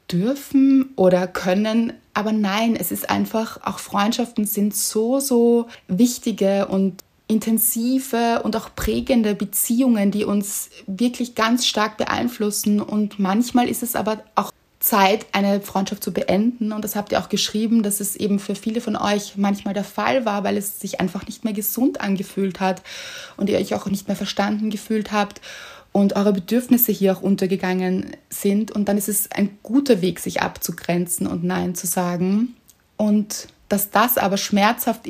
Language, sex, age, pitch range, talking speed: German, female, 20-39, 195-225 Hz, 165 wpm